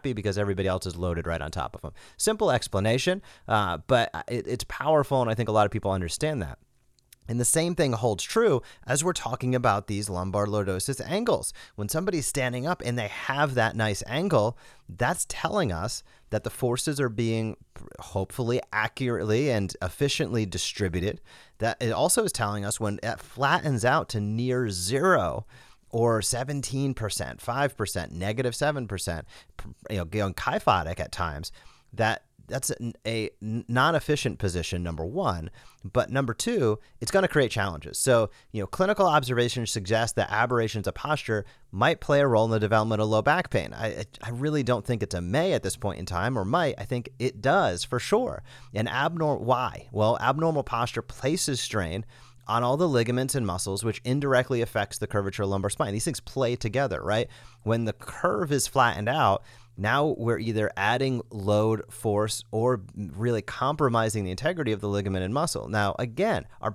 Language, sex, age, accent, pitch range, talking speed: English, male, 30-49, American, 105-130 Hz, 180 wpm